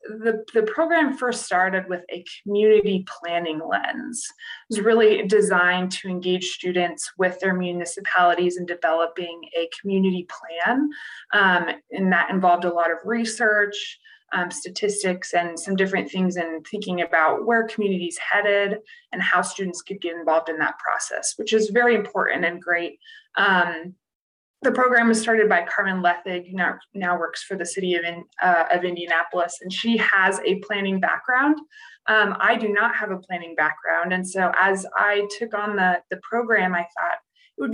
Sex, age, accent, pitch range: female, 20-39, American, 180-220 Hz